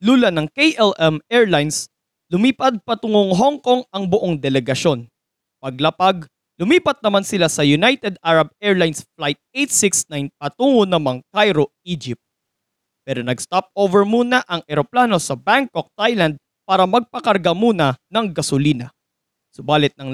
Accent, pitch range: Filipino, 150-225 Hz